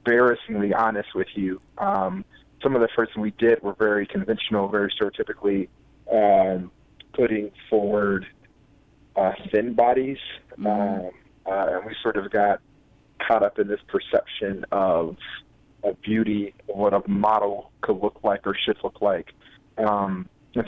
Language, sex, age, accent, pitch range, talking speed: English, male, 30-49, American, 100-115 Hz, 145 wpm